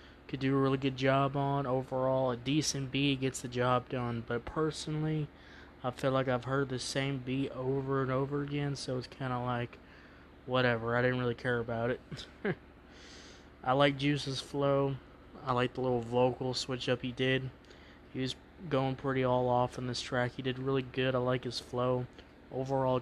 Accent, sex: American, male